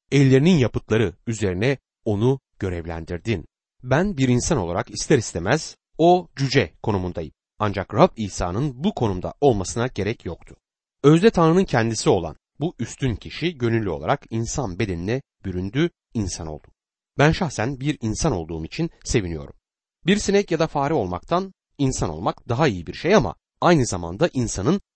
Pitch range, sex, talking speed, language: 95-145 Hz, male, 140 wpm, Turkish